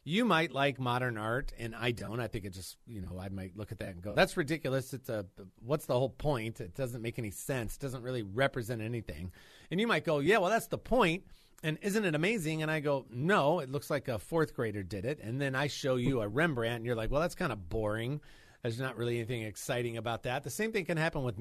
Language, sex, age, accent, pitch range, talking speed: English, male, 40-59, American, 115-160 Hz, 260 wpm